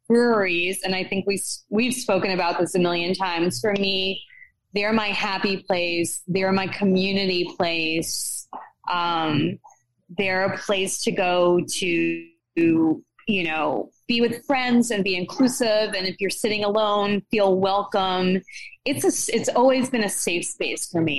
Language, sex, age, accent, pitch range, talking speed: English, female, 20-39, American, 175-235 Hz, 155 wpm